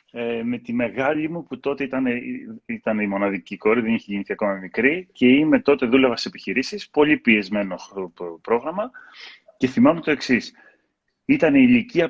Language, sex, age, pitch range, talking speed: Greek, male, 30-49, 110-180 Hz, 175 wpm